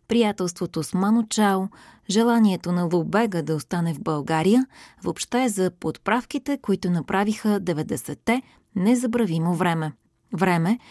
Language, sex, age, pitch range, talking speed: Bulgarian, female, 20-39, 165-220 Hz, 110 wpm